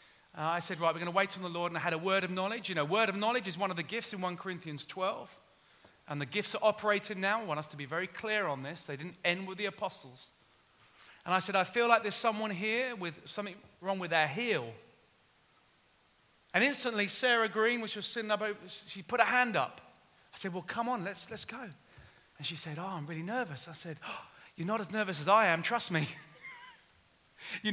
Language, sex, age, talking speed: English, male, 30-49, 235 wpm